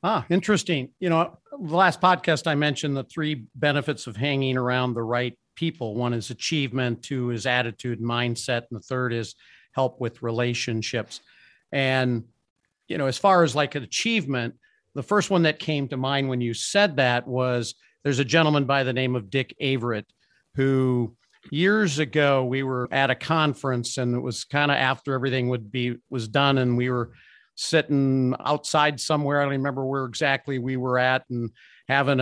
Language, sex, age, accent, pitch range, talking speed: English, male, 50-69, American, 125-150 Hz, 180 wpm